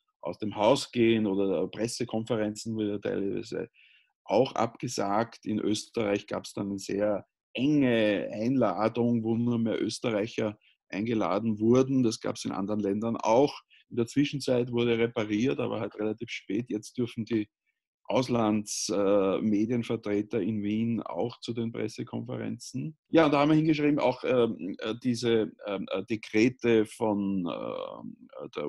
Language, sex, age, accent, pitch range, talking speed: German, male, 50-69, Austrian, 105-120 Hz, 140 wpm